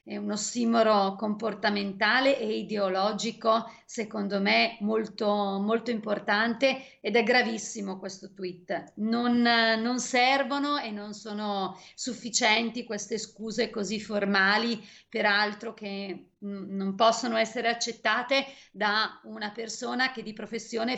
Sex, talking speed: female, 110 wpm